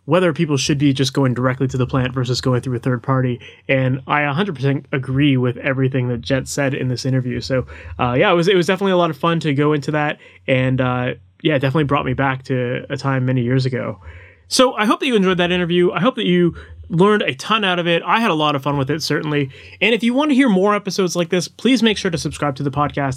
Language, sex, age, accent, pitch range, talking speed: English, male, 20-39, American, 130-170 Hz, 265 wpm